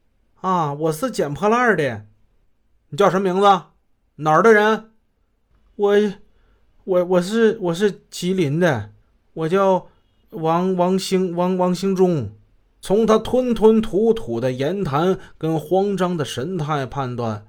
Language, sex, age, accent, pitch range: Chinese, male, 20-39, native, 135-190 Hz